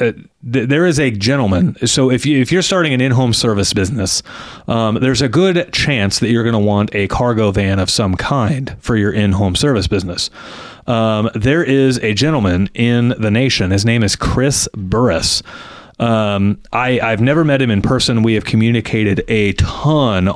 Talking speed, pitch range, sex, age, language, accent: 185 wpm, 100-125 Hz, male, 30-49, English, American